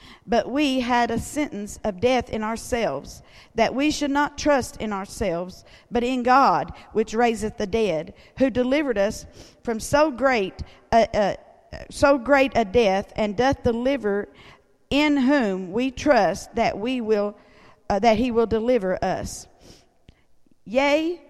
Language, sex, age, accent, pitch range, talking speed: English, female, 50-69, American, 215-275 Hz, 140 wpm